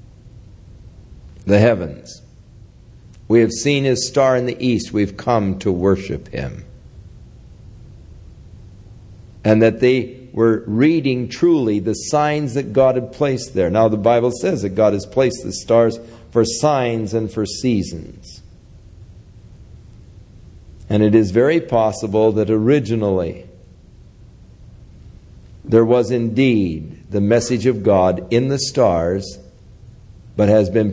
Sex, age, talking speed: male, 60-79, 120 wpm